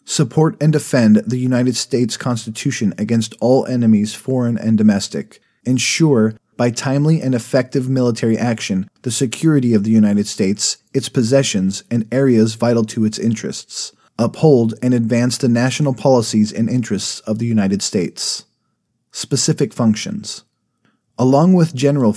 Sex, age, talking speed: male, 30-49, 140 wpm